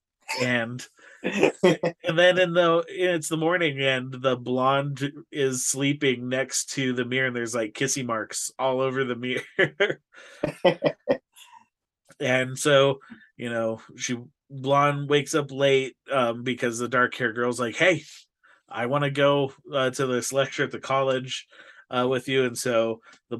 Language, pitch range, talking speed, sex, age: English, 120-140 Hz, 155 wpm, male, 30-49